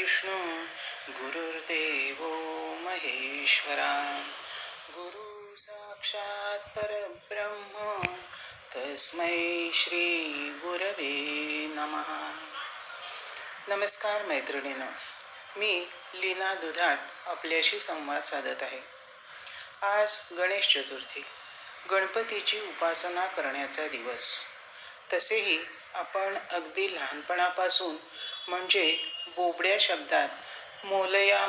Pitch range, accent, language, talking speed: 160-205 Hz, native, Marathi, 50 wpm